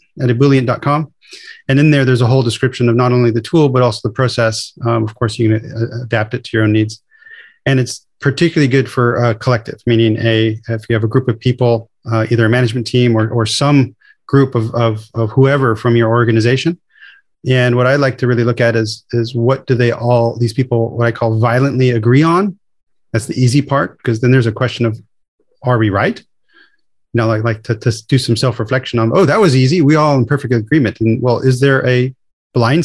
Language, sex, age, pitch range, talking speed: English, male, 30-49, 115-135 Hz, 225 wpm